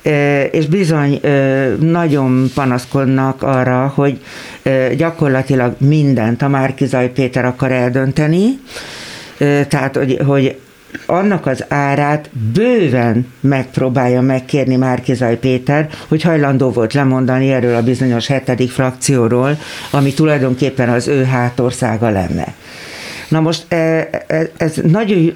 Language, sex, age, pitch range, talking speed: Hungarian, female, 60-79, 130-150 Hz, 100 wpm